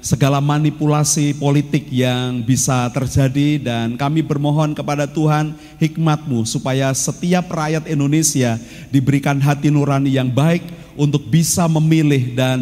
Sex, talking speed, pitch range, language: male, 120 wpm, 130-155 Hz, Indonesian